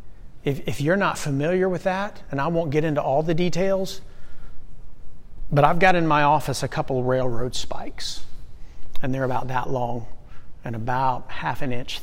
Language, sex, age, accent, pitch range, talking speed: English, male, 40-59, American, 125-155 Hz, 175 wpm